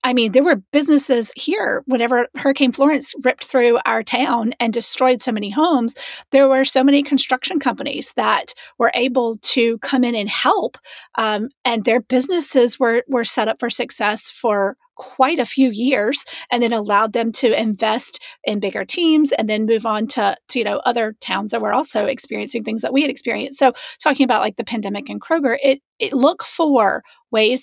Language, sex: English, female